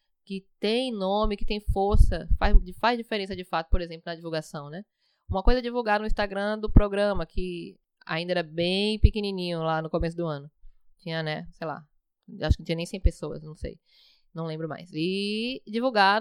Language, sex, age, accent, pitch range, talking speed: Portuguese, female, 10-29, Brazilian, 170-215 Hz, 190 wpm